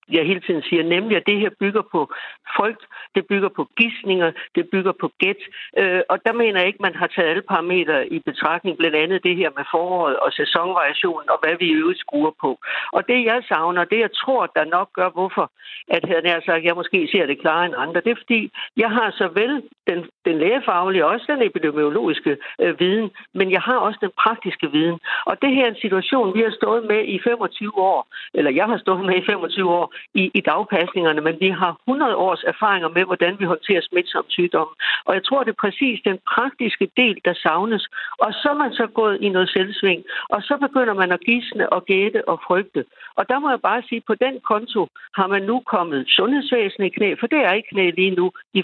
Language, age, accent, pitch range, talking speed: Danish, 60-79, native, 175-225 Hz, 220 wpm